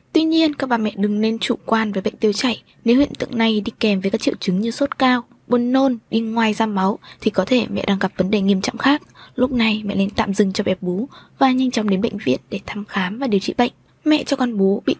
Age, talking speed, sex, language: 20-39, 280 wpm, female, Vietnamese